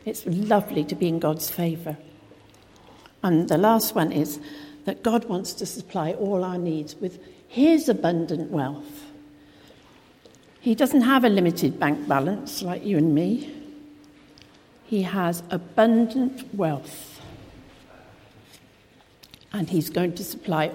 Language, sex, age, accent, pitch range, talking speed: English, female, 60-79, British, 165-230 Hz, 125 wpm